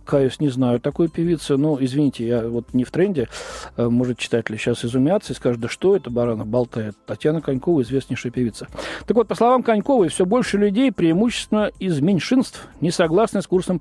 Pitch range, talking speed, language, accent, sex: 135-200 Hz, 185 wpm, Russian, native, male